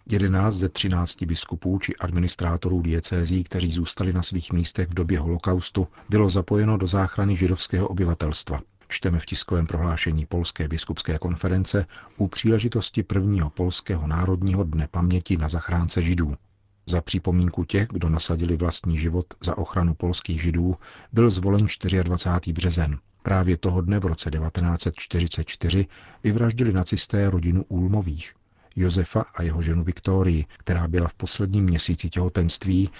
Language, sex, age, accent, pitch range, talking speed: Czech, male, 50-69, native, 85-95 Hz, 135 wpm